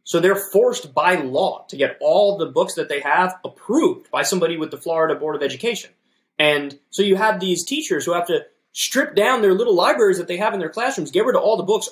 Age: 20-39